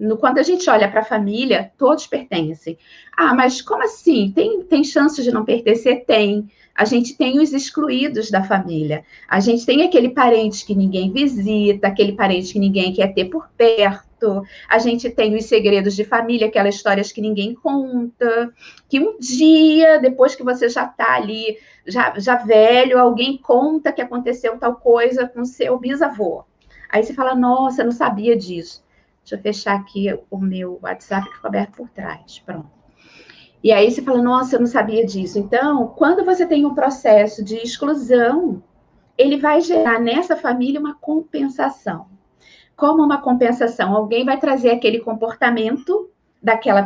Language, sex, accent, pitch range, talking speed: Portuguese, female, Brazilian, 215-285 Hz, 165 wpm